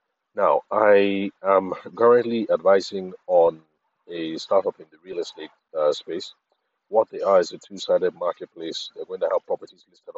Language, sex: English, male